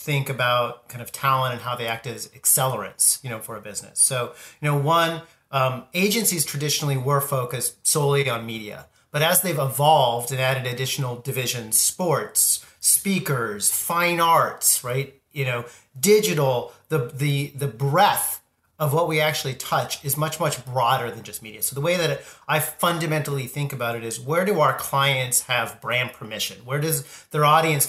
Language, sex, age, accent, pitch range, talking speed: English, male, 40-59, American, 125-160 Hz, 175 wpm